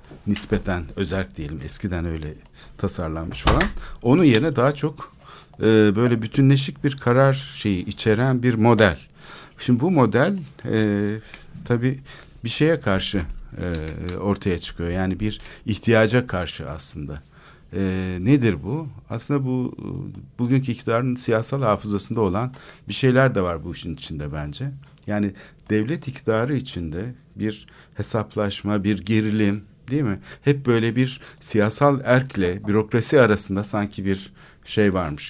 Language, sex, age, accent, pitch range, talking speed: Turkish, male, 60-79, native, 95-130 Hz, 125 wpm